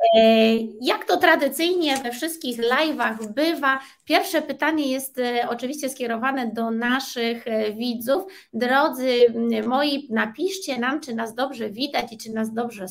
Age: 20-39